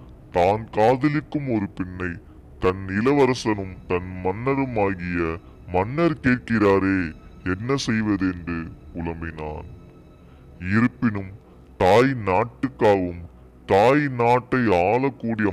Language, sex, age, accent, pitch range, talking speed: Tamil, female, 20-39, native, 80-110 Hz, 75 wpm